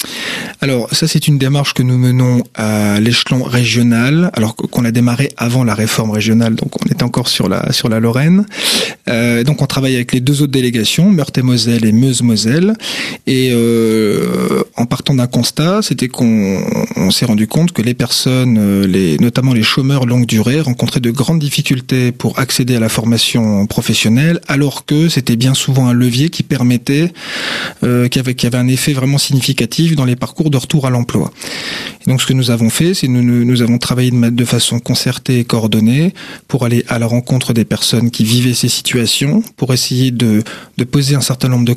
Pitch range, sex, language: 120-140 Hz, male, French